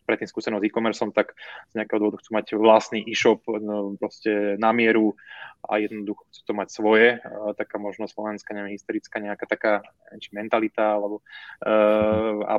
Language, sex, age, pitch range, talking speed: Slovak, male, 20-39, 105-115 Hz, 155 wpm